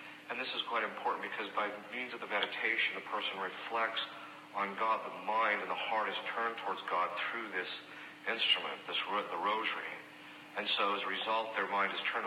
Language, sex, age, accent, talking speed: English, male, 40-59, American, 200 wpm